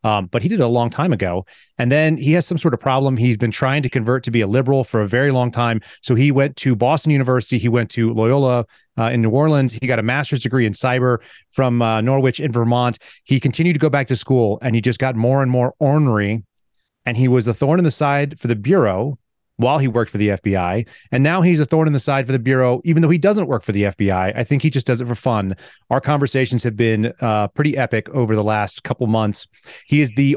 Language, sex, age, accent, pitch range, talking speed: English, male, 30-49, American, 115-145 Hz, 255 wpm